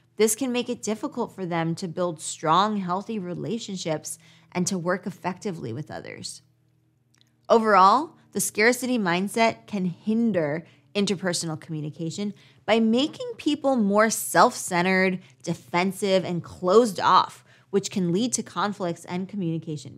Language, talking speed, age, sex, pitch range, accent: English, 130 wpm, 20-39, female, 155-215 Hz, American